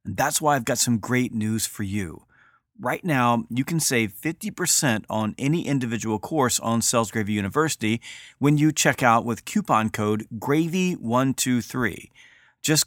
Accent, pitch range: American, 115-145 Hz